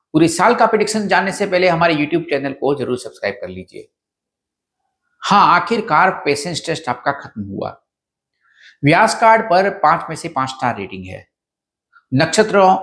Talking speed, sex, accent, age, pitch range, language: 155 wpm, male, native, 50-69, 140-225 Hz, Hindi